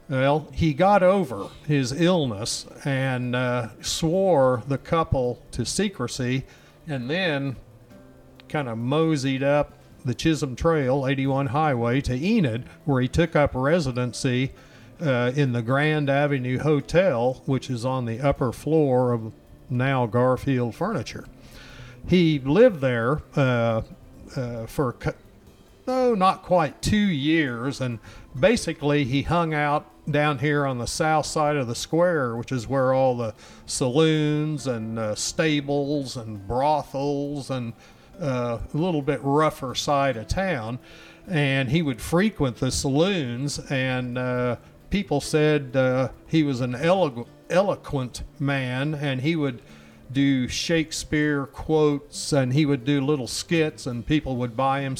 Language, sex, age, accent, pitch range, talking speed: English, male, 50-69, American, 125-150 Hz, 135 wpm